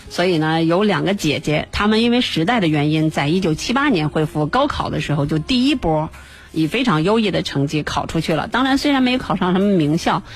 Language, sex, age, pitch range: Chinese, female, 30-49, 150-200 Hz